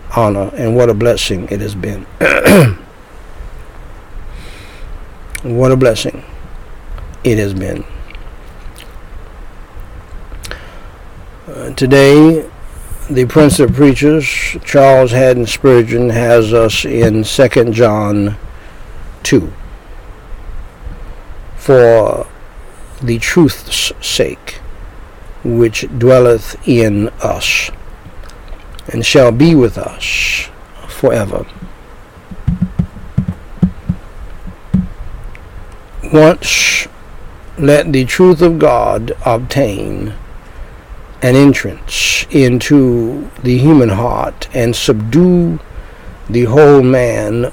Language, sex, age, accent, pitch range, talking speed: English, male, 60-79, American, 100-135 Hz, 75 wpm